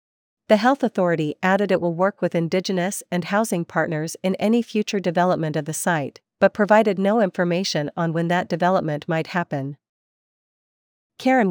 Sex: female